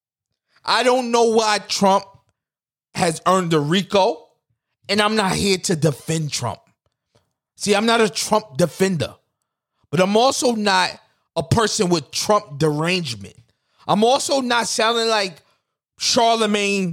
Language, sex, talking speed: English, male, 130 wpm